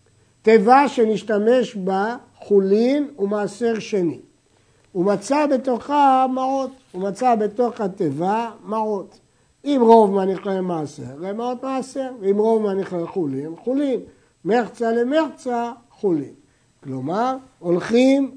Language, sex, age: Hebrew, male, 60-79